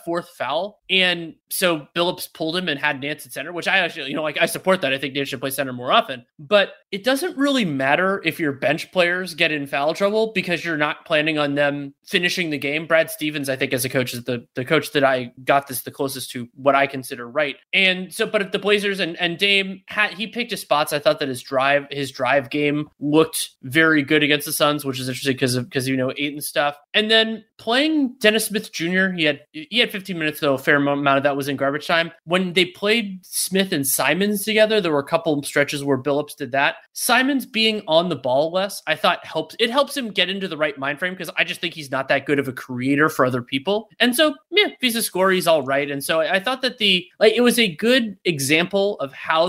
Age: 20-39